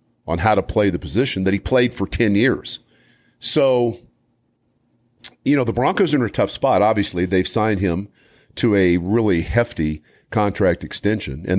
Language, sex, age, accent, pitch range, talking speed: English, male, 50-69, American, 90-120 Hz, 170 wpm